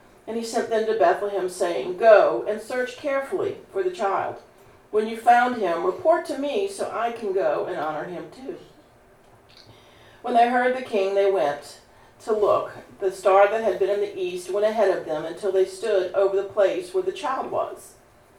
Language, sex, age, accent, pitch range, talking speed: English, female, 50-69, American, 185-230 Hz, 195 wpm